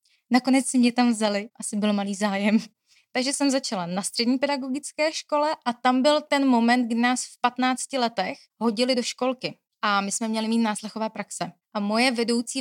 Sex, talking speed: female, 185 wpm